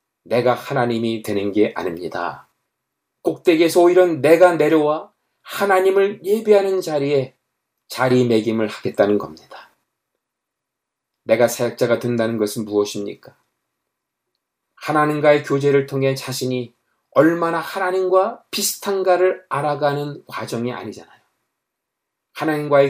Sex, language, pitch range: male, Korean, 125-175 Hz